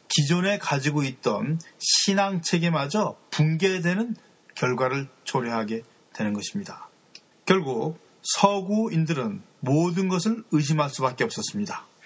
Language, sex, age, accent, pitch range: Korean, male, 30-49, native, 140-190 Hz